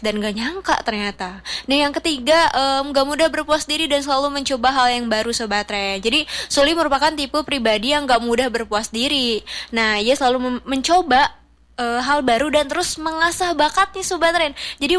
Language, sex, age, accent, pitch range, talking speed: Indonesian, female, 20-39, native, 220-280 Hz, 180 wpm